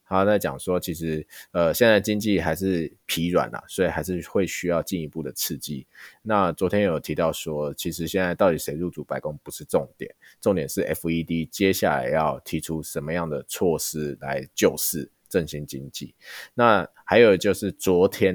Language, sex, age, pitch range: Chinese, male, 20-39, 80-105 Hz